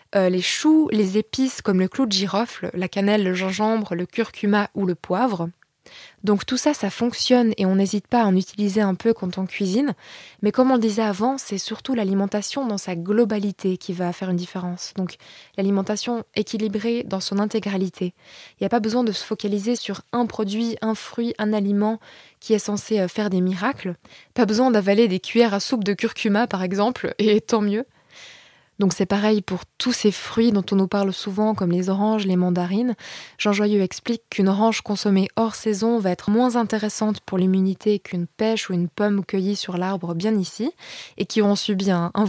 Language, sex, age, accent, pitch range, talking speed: French, female, 20-39, French, 190-225 Hz, 200 wpm